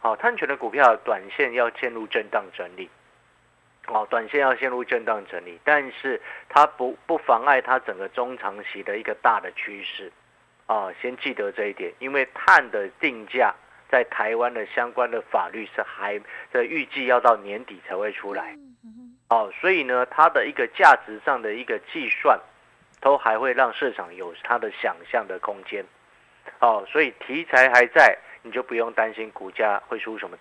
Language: Chinese